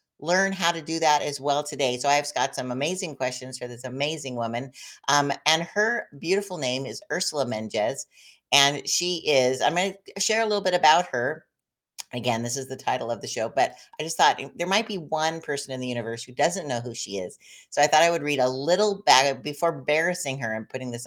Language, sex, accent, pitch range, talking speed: English, female, American, 125-165 Hz, 225 wpm